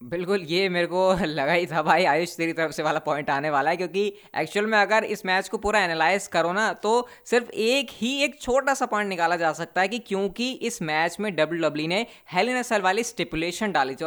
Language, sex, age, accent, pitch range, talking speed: Hindi, female, 20-39, native, 150-195 Hz, 230 wpm